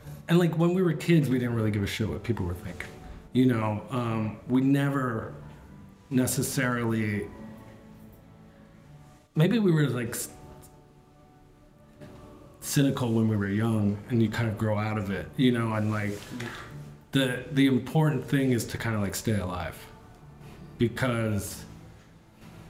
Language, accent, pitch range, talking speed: English, American, 110-140 Hz, 145 wpm